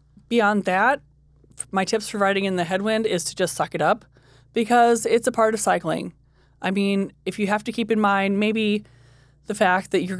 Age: 20-39